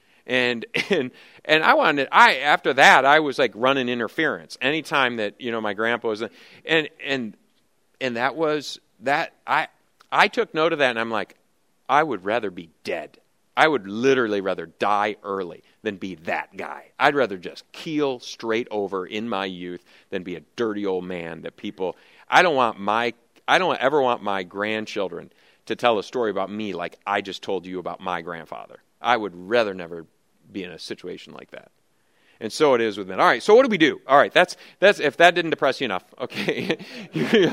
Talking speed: 200 wpm